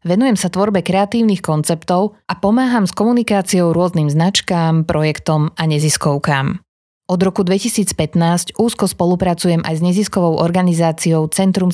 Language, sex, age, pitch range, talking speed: Slovak, female, 30-49, 160-195 Hz, 125 wpm